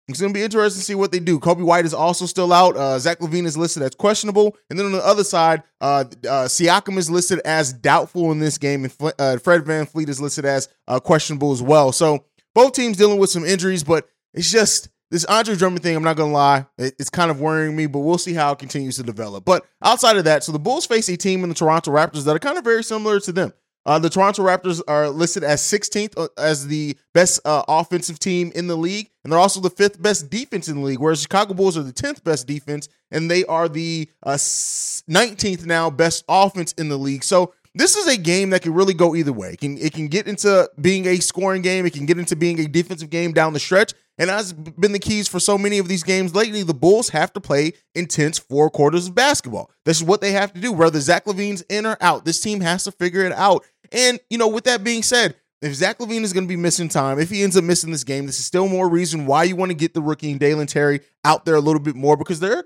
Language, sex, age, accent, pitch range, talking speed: English, male, 20-39, American, 155-195 Hz, 260 wpm